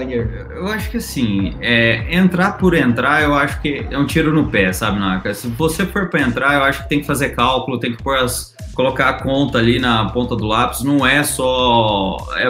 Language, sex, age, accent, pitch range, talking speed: Portuguese, male, 20-39, Brazilian, 115-145 Hz, 220 wpm